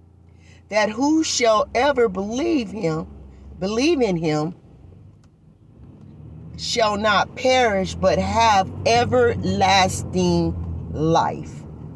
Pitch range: 170-240 Hz